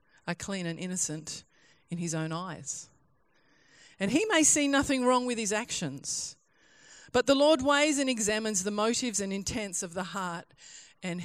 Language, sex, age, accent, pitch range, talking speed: English, female, 40-59, Australian, 195-265 Hz, 165 wpm